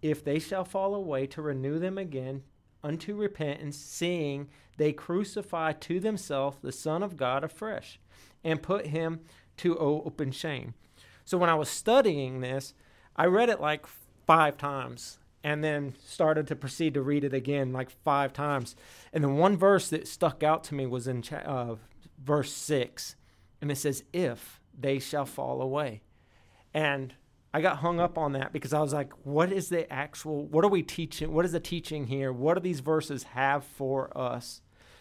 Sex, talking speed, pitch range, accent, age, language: male, 180 wpm, 130-160 Hz, American, 40-59, English